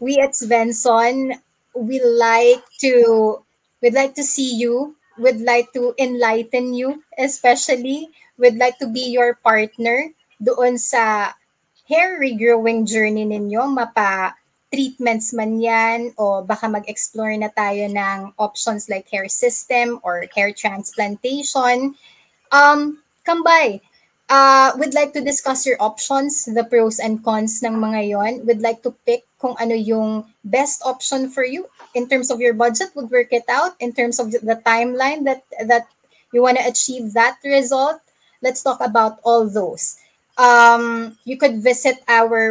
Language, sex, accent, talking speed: English, female, Filipino, 150 wpm